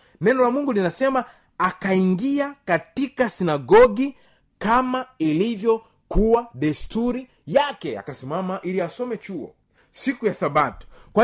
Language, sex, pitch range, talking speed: Swahili, male, 175-245 Hz, 100 wpm